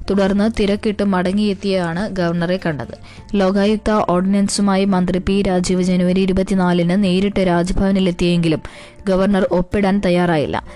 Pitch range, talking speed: 175-195 Hz, 100 wpm